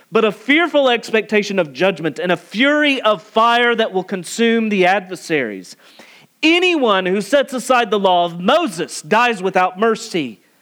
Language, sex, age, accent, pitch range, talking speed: English, male, 40-59, American, 140-210 Hz, 155 wpm